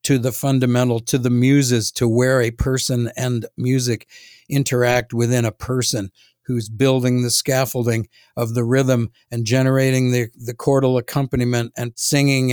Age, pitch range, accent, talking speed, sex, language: 50-69, 120-140 Hz, American, 150 wpm, male, English